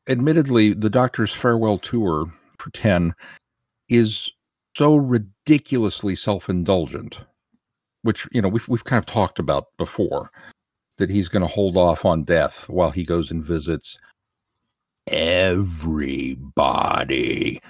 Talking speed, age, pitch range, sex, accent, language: 120 wpm, 50-69, 90-120 Hz, male, American, English